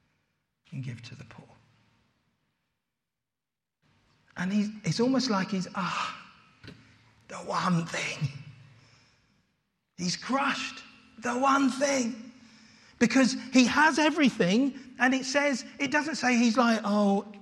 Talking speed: 115 wpm